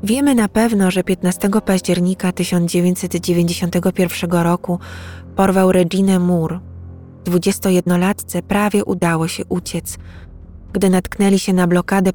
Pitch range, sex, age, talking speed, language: 165-190 Hz, female, 20-39, 110 wpm, Polish